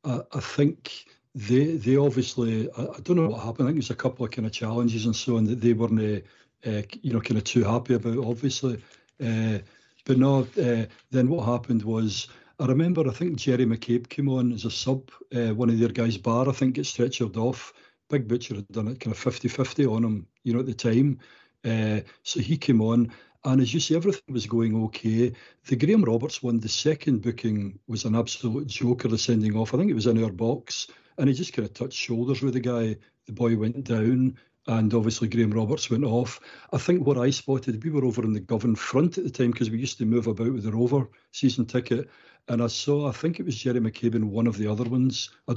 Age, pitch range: 60-79, 115-130 Hz